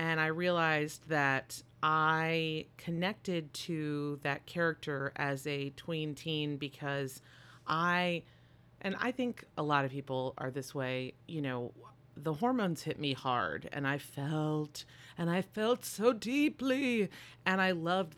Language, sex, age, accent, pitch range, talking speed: English, female, 30-49, American, 130-160 Hz, 140 wpm